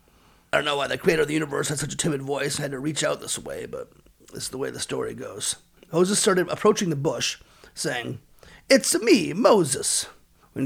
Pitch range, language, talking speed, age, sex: 140-210 Hz, English, 220 wpm, 30-49, male